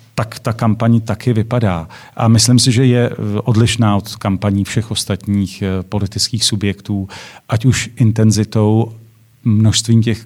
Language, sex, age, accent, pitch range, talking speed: Czech, male, 40-59, native, 105-120 Hz, 130 wpm